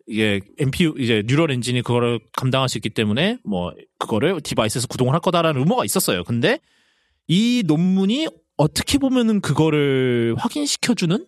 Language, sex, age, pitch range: Korean, male, 30-49, 125-185 Hz